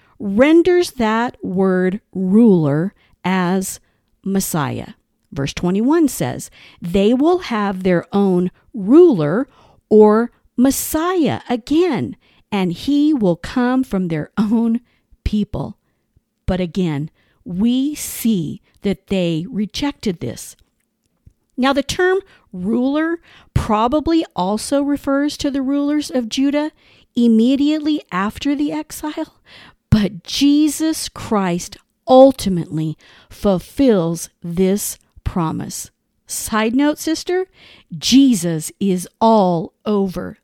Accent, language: American, English